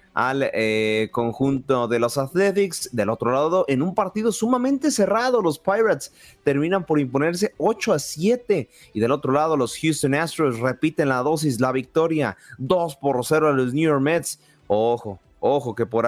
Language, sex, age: Spanish, male, 30-49